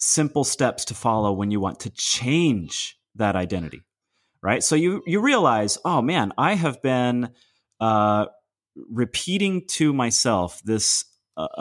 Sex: male